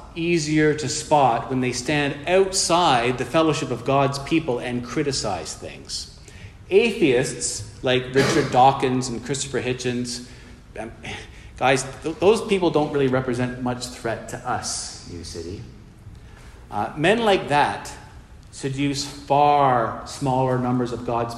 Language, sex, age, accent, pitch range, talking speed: English, male, 40-59, American, 125-160 Hz, 125 wpm